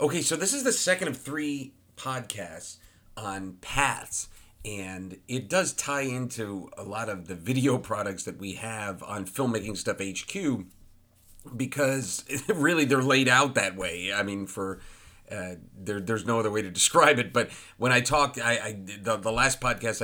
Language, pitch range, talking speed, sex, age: English, 100-125 Hz, 175 wpm, male, 40-59